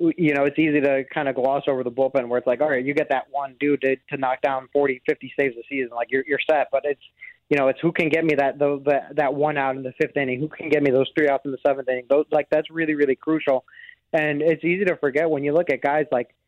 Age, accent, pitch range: 20-39, American, 135-150 Hz